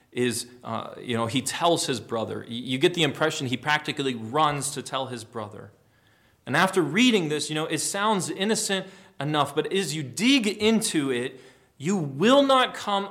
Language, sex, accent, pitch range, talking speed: English, male, American, 130-205 Hz, 180 wpm